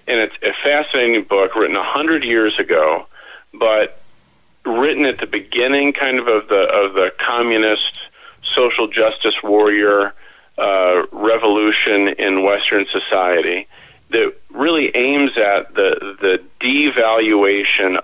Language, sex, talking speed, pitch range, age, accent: English, male, 120 wpm, 100-135 Hz, 40-59, American